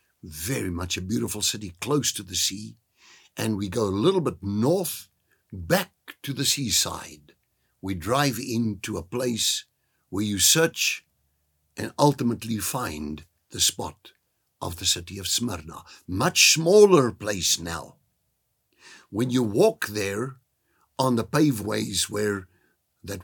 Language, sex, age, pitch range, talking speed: English, male, 60-79, 95-135 Hz, 130 wpm